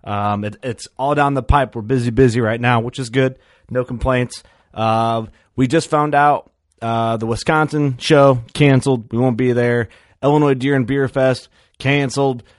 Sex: male